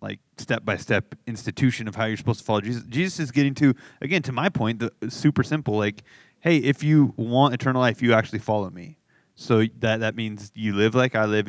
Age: 20-39